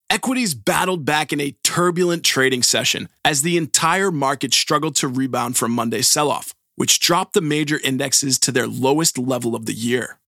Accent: American